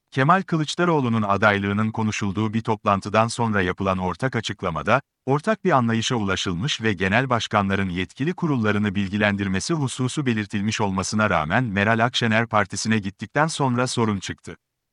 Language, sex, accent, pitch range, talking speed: Turkish, male, native, 100-130 Hz, 125 wpm